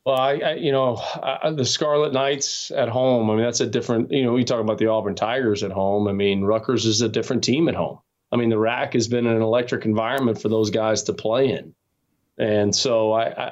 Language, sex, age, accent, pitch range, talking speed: English, male, 20-39, American, 115-140 Hz, 235 wpm